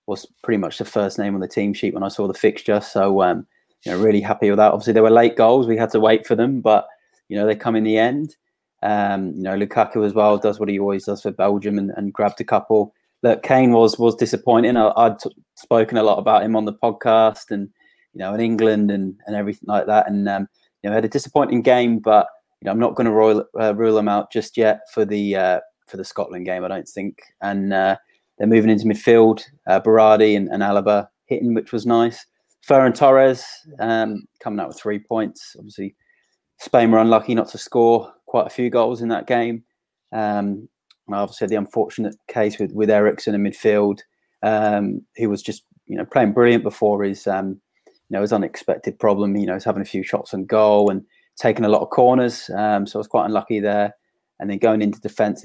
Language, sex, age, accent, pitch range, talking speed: English, male, 20-39, British, 100-115 Hz, 225 wpm